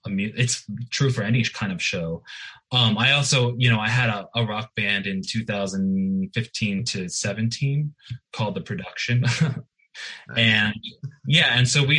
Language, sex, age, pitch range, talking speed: English, male, 20-39, 100-125 Hz, 150 wpm